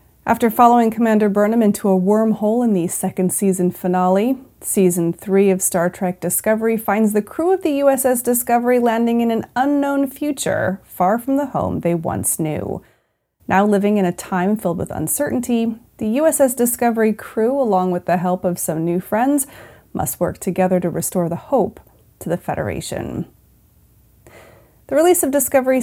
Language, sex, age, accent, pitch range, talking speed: English, female, 30-49, American, 180-240 Hz, 165 wpm